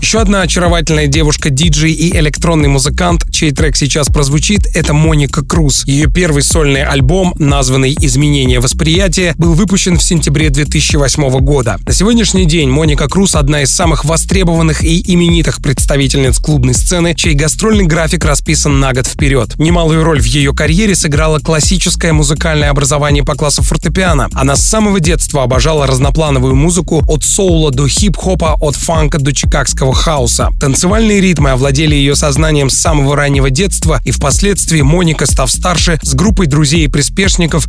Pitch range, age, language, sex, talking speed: 140-170 Hz, 30-49, Russian, male, 155 wpm